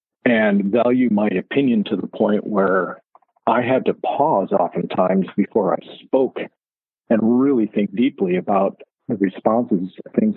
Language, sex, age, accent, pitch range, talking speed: English, male, 50-69, American, 95-115 Hz, 140 wpm